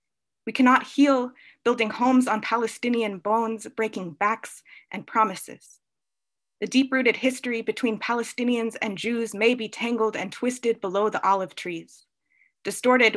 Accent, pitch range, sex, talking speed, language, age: American, 205-245 Hz, female, 130 wpm, English, 20-39